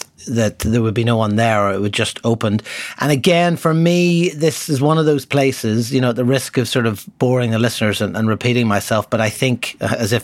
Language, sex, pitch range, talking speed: English, male, 115-140 Hz, 245 wpm